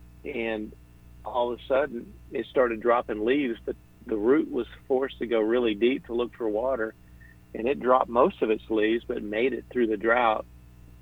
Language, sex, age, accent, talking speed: English, male, 50-69, American, 190 wpm